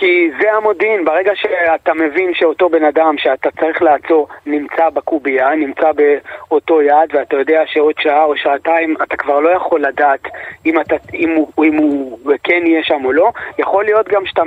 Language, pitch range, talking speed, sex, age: Hebrew, 150-215 Hz, 185 wpm, male, 20-39